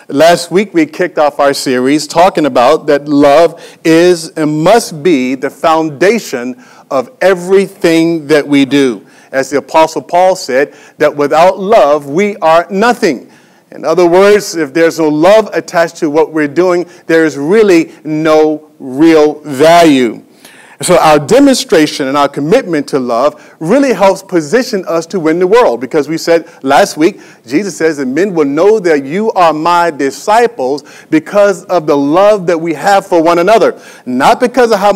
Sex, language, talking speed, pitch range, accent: male, English, 165 wpm, 155-210 Hz, American